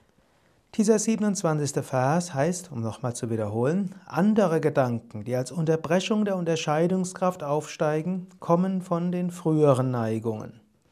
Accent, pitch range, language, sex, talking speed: German, 130-175 Hz, German, male, 115 wpm